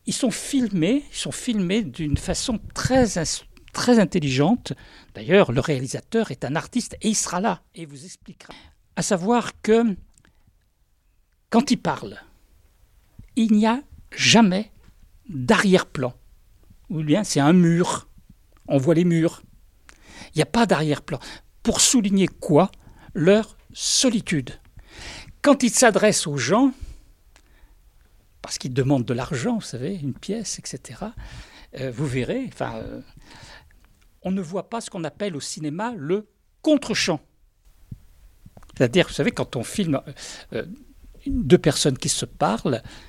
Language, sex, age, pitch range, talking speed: French, male, 50-69, 135-225 Hz, 140 wpm